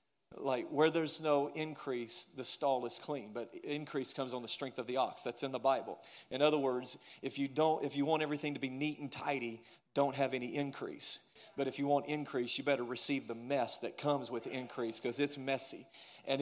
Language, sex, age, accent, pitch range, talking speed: English, male, 40-59, American, 130-150 Hz, 215 wpm